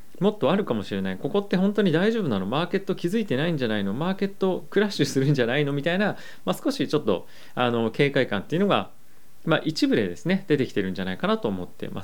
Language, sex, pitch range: Japanese, male, 105-175 Hz